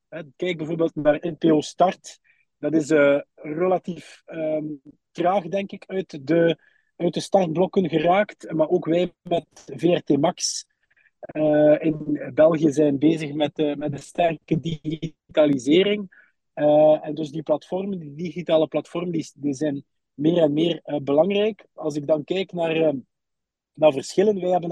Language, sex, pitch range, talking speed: Dutch, male, 150-180 Hz, 150 wpm